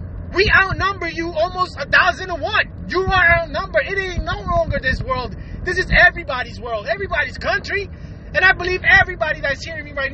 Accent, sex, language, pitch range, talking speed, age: American, male, English, 285-360 Hz, 185 wpm, 30-49